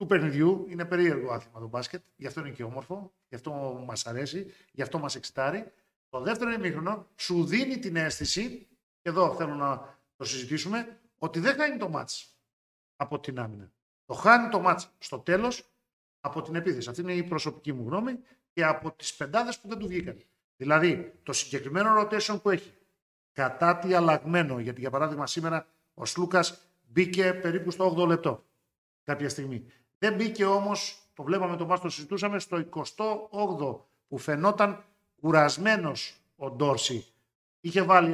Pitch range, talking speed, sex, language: 145-195 Hz, 165 wpm, male, Greek